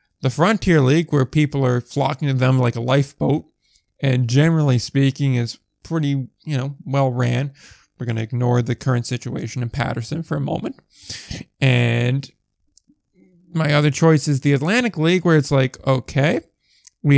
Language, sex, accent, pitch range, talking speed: English, male, American, 130-155 Hz, 155 wpm